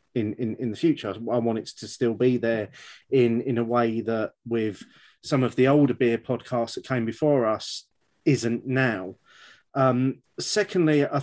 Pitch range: 120-145 Hz